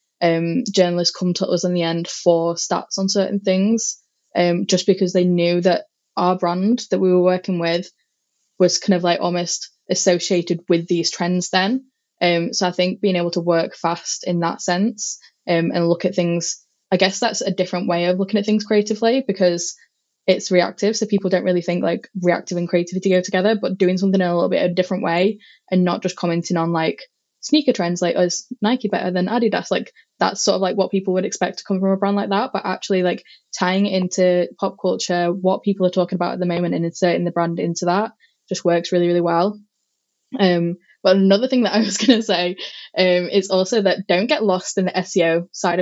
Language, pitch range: English, 175-200 Hz